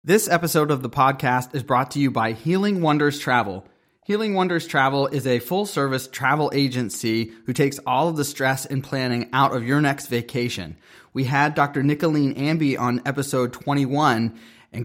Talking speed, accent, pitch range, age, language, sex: 175 wpm, American, 125-155 Hz, 30-49, English, male